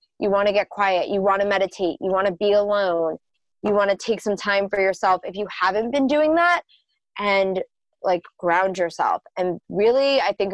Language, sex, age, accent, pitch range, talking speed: English, female, 20-39, American, 185-245 Hz, 205 wpm